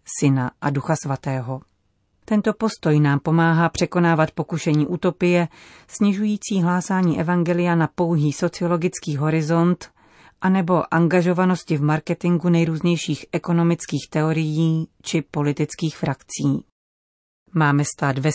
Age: 30-49